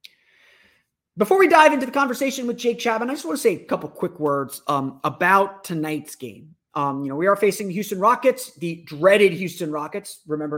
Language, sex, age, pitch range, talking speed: English, male, 30-49, 155-205 Hz, 205 wpm